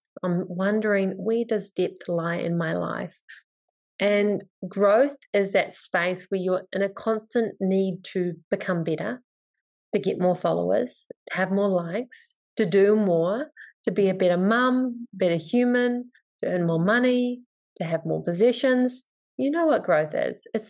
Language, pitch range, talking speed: English, 185-245 Hz, 160 wpm